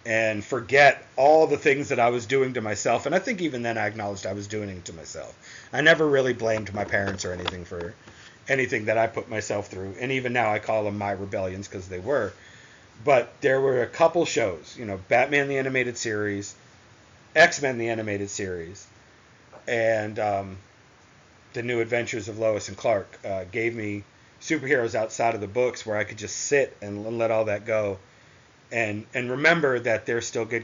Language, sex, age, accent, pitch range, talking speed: English, male, 40-59, American, 105-125 Hz, 195 wpm